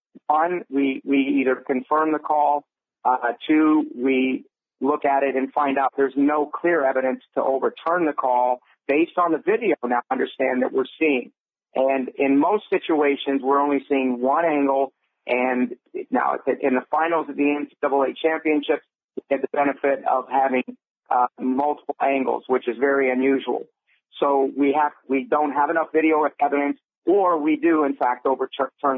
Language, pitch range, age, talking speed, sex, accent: English, 130-150 Hz, 50-69, 160 wpm, male, American